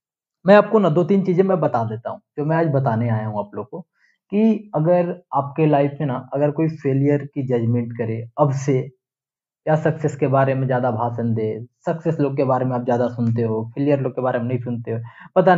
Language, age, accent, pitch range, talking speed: Hindi, 20-39, native, 120-155 Hz, 225 wpm